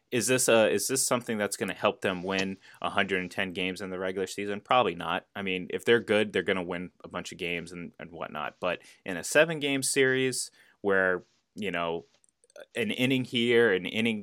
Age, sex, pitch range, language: 20-39, male, 90-110 Hz, English